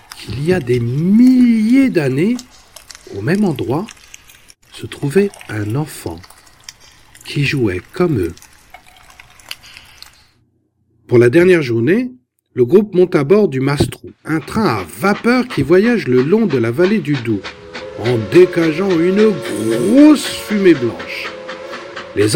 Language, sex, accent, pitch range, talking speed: French, male, French, 145-230 Hz, 130 wpm